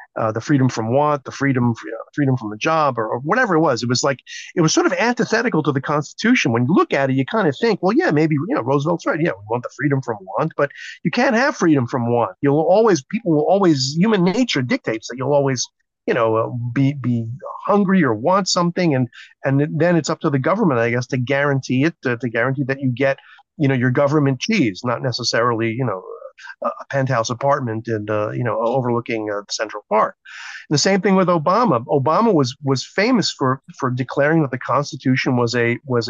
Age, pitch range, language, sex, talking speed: 40-59, 125-155 Hz, English, male, 225 wpm